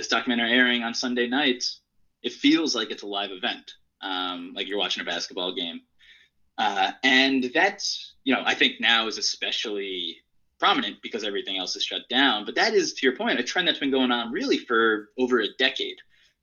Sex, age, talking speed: male, 20-39, 195 wpm